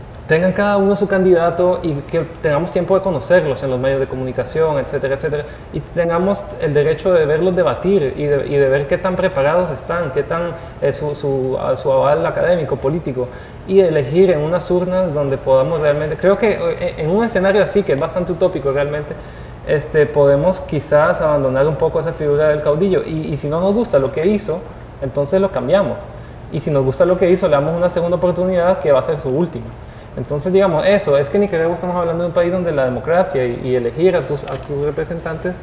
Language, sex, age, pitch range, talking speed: Spanish, male, 20-39, 140-180 Hz, 210 wpm